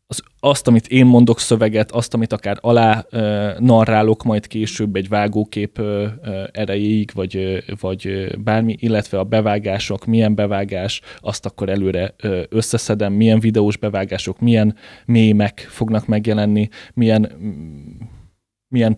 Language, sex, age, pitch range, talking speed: Hungarian, male, 20-39, 100-115 Hz, 115 wpm